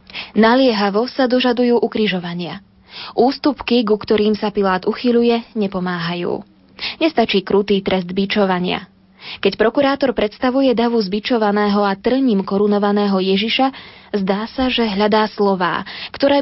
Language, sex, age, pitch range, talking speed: Slovak, female, 20-39, 195-245 Hz, 110 wpm